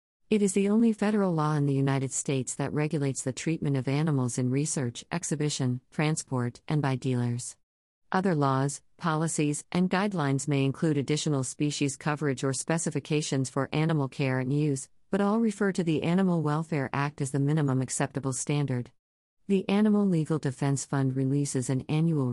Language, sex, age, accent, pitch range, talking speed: English, female, 50-69, American, 130-160 Hz, 165 wpm